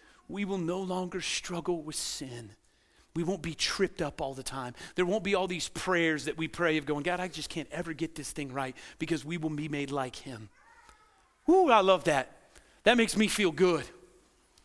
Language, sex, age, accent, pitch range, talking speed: English, male, 40-59, American, 185-295 Hz, 210 wpm